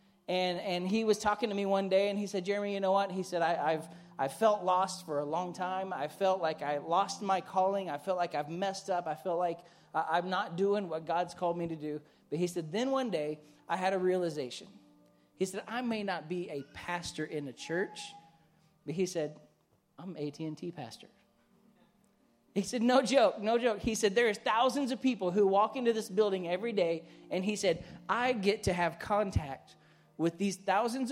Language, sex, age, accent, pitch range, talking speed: English, male, 30-49, American, 160-205 Hz, 210 wpm